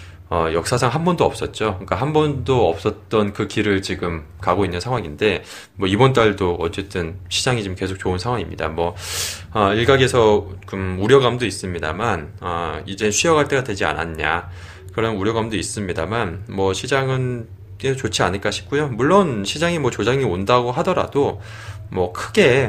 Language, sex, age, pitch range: Korean, male, 20-39, 90-120 Hz